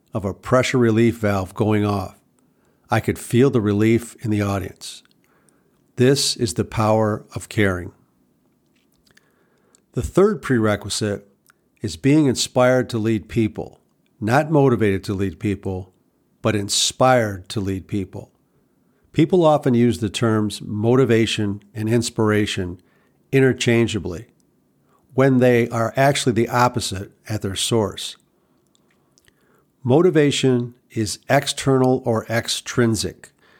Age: 50-69